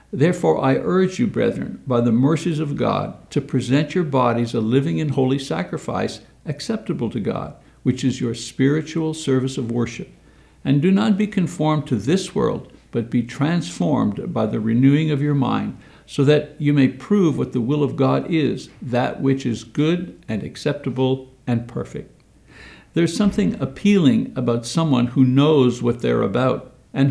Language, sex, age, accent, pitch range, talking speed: English, male, 60-79, American, 120-160 Hz, 170 wpm